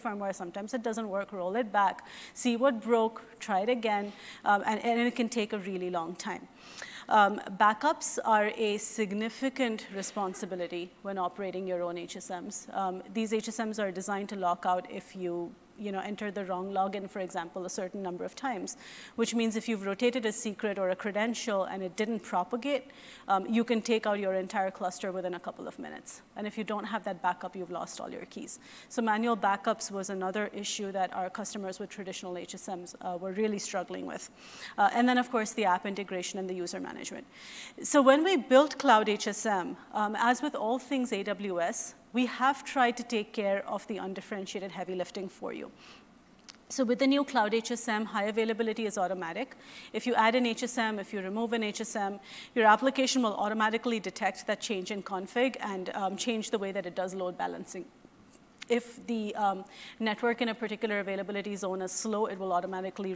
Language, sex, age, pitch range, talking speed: English, female, 30-49, 190-230 Hz, 195 wpm